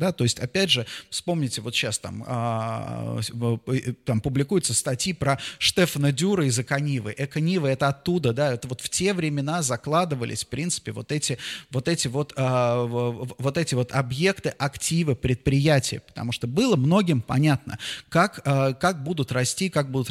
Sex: male